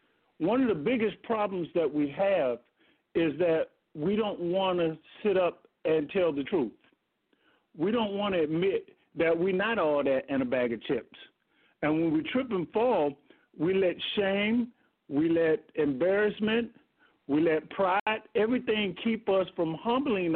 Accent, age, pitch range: American, 50-69, 165-225 Hz